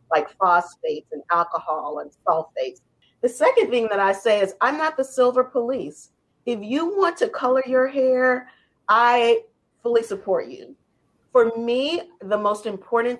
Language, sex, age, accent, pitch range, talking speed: English, female, 40-59, American, 185-245 Hz, 155 wpm